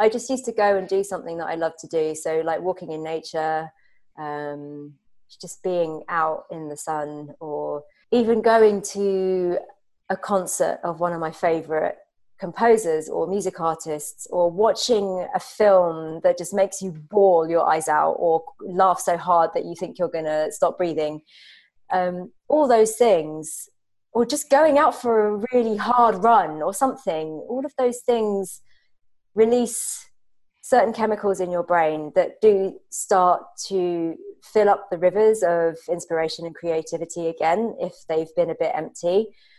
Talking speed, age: 165 wpm, 30-49